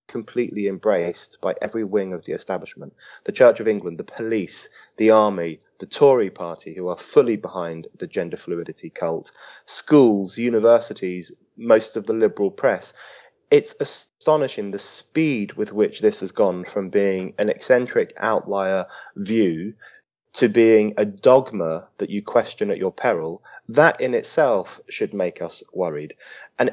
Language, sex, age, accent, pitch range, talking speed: English, male, 30-49, British, 105-145 Hz, 150 wpm